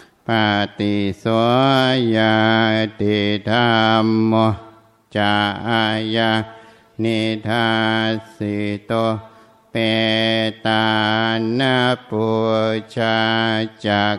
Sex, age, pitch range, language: male, 60-79, 110-115 Hz, Thai